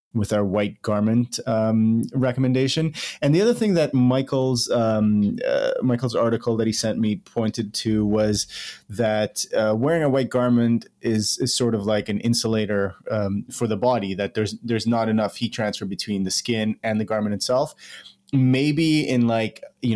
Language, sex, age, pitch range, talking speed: English, male, 30-49, 105-120 Hz, 175 wpm